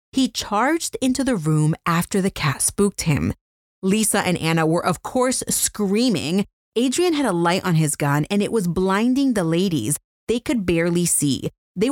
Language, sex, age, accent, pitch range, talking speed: English, female, 30-49, American, 165-245 Hz, 175 wpm